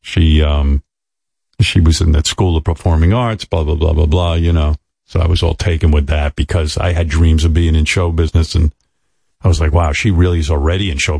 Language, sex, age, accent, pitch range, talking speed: English, male, 50-69, American, 80-95 Hz, 235 wpm